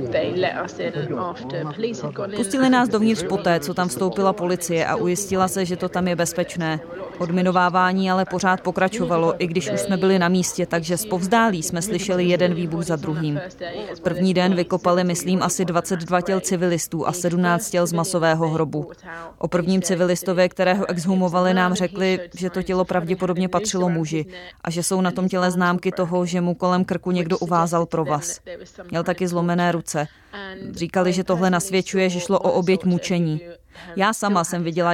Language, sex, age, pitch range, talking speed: Czech, female, 20-39, 175-185 Hz, 165 wpm